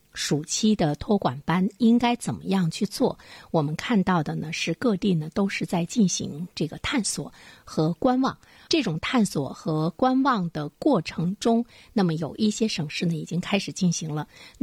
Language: Chinese